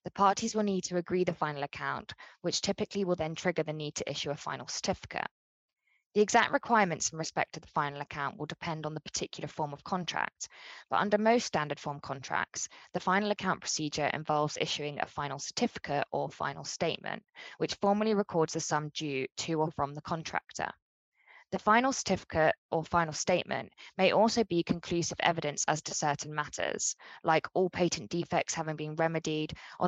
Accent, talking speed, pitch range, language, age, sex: British, 180 wpm, 150-185 Hz, English, 20-39, female